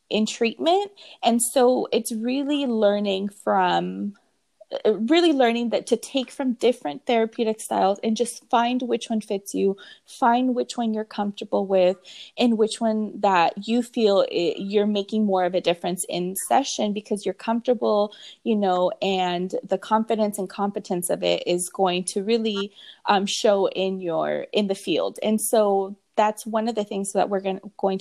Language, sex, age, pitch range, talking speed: English, female, 20-39, 195-265 Hz, 165 wpm